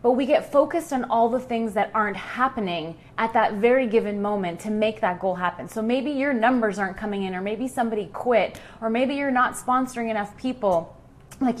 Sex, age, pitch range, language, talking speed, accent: female, 20-39, 205-255 Hz, English, 205 wpm, American